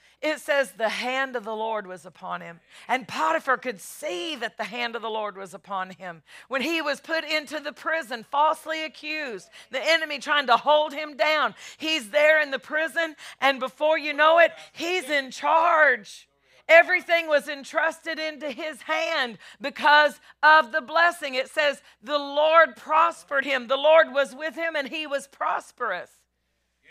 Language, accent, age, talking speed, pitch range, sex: English, American, 40-59, 170 wpm, 250-310 Hz, female